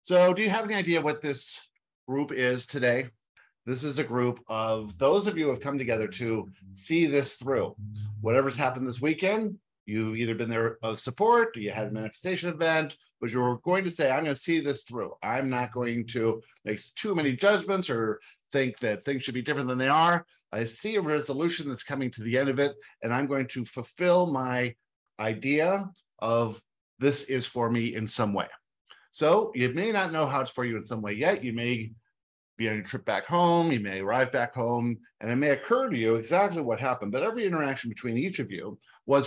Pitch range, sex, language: 115-155 Hz, male, English